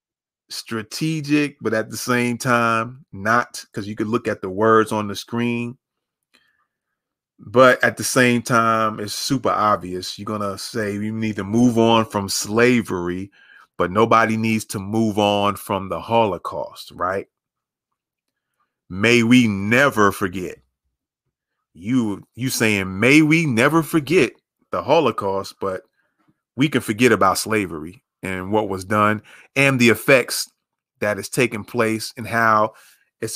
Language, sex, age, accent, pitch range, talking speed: English, male, 30-49, American, 105-125 Hz, 140 wpm